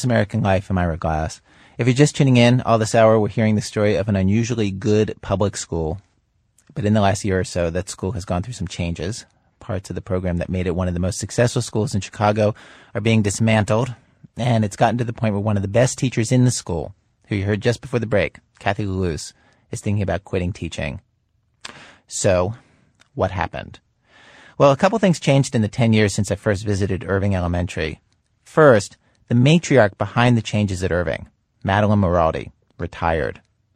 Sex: male